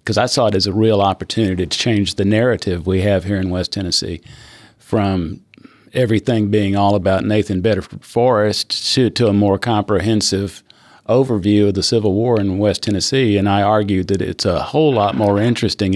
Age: 50-69